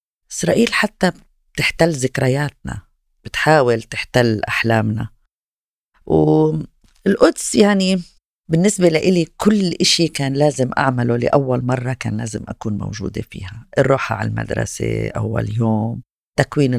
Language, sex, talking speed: Arabic, female, 105 wpm